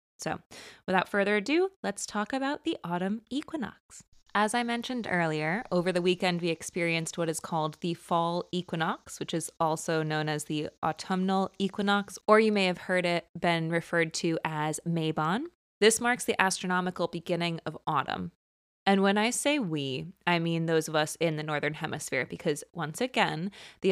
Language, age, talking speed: English, 20-39, 175 wpm